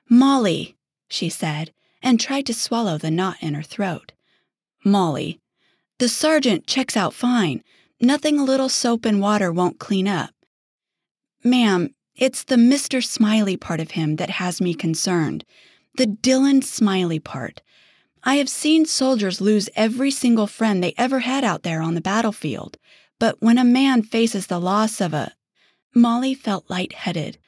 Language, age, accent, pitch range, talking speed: English, 30-49, American, 180-245 Hz, 155 wpm